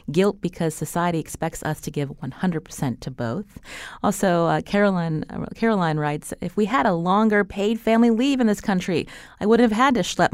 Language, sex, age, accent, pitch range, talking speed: English, female, 30-49, American, 155-210 Hz, 190 wpm